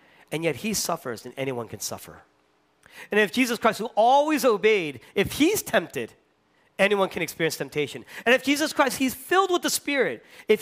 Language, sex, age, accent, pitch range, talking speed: English, male, 40-59, American, 130-175 Hz, 180 wpm